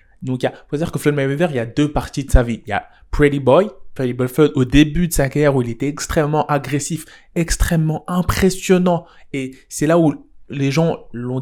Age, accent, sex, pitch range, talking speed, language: 20-39, French, male, 140-175 Hz, 215 wpm, French